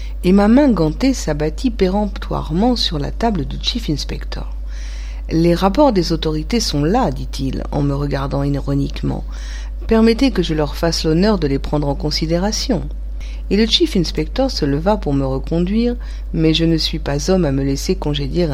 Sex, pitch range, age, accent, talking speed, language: female, 140-215 Hz, 50-69, French, 170 wpm, English